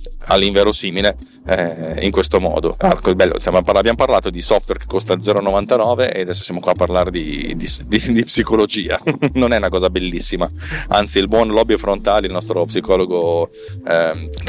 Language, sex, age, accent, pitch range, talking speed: Italian, male, 30-49, native, 85-115 Hz, 145 wpm